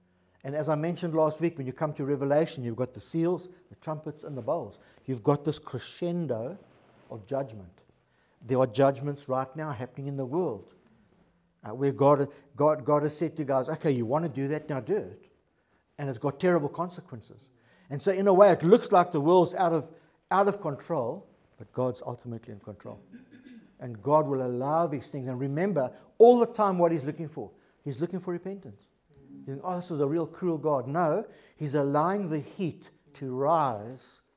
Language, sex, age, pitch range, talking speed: English, male, 60-79, 130-175 Hz, 190 wpm